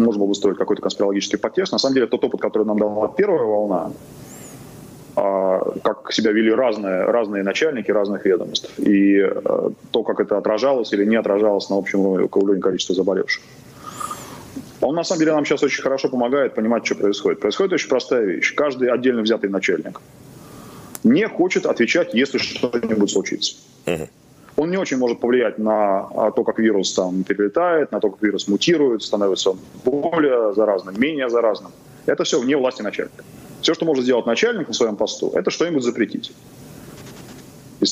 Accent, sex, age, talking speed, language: native, male, 20-39, 160 wpm, Russian